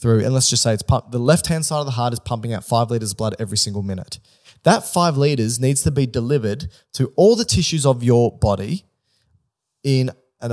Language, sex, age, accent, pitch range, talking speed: English, male, 20-39, Australian, 110-140 Hz, 220 wpm